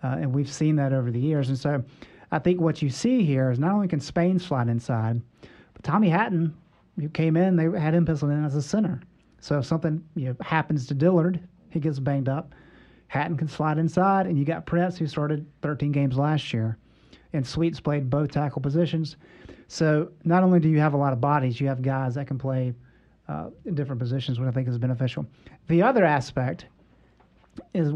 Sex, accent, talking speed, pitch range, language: male, American, 210 wpm, 135-170 Hz, English